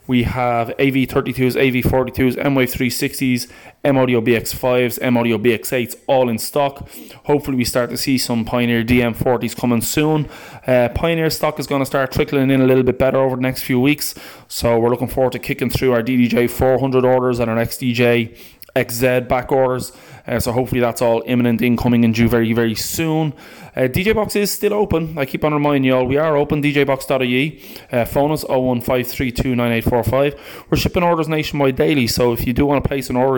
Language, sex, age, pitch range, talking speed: English, male, 20-39, 120-145 Hz, 190 wpm